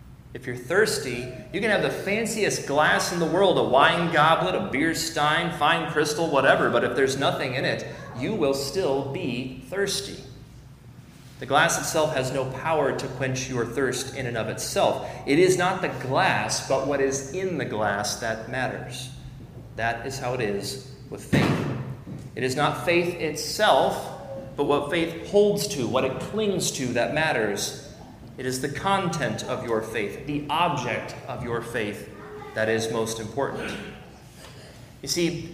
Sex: male